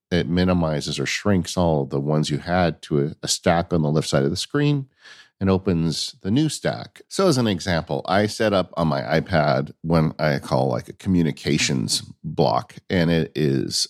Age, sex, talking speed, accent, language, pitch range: 50-69, male, 200 wpm, American, English, 75-95 Hz